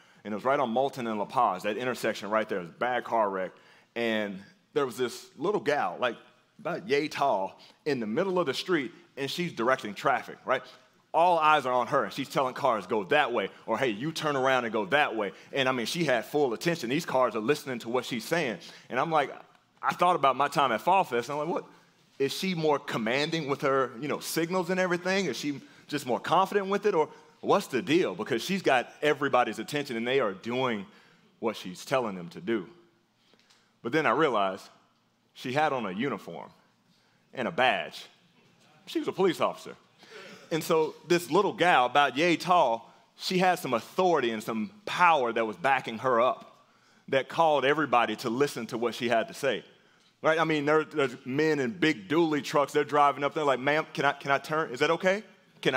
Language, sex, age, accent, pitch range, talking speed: English, male, 30-49, American, 125-165 Hz, 215 wpm